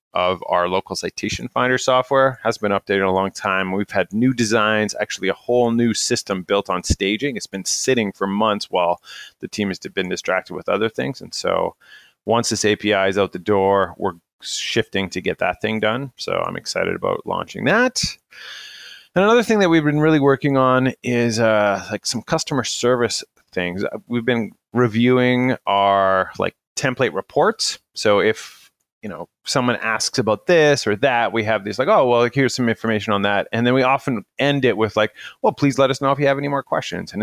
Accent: American